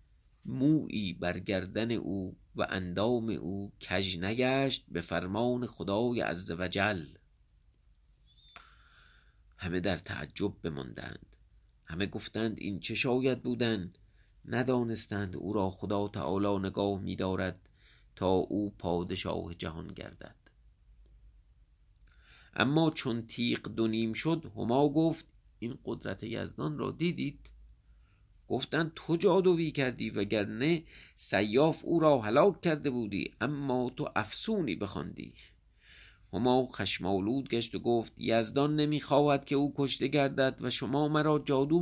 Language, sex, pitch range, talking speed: English, male, 95-135 Hz, 115 wpm